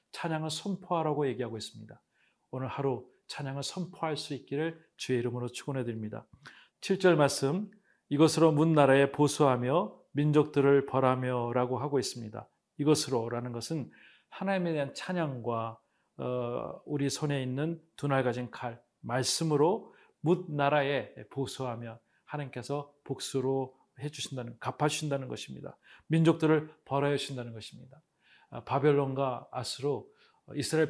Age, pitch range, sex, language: 40-59, 125-155 Hz, male, Korean